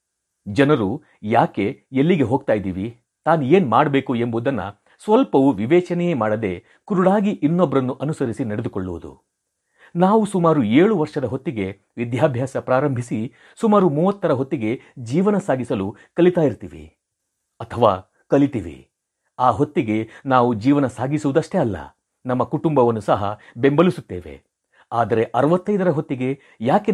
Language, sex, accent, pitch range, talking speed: Kannada, male, native, 115-160 Hz, 100 wpm